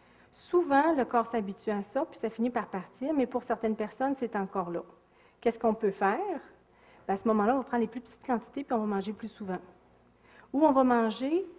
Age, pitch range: 40-59, 195-250 Hz